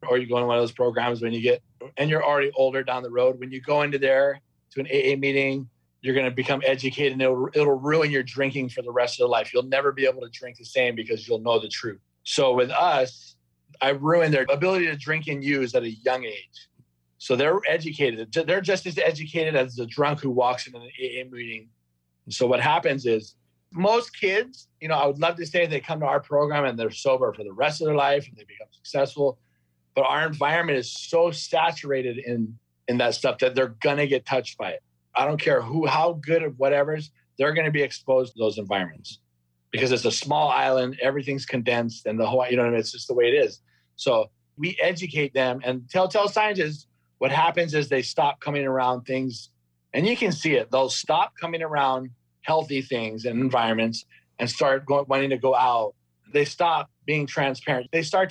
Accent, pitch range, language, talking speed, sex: American, 120-155 Hz, English, 220 wpm, male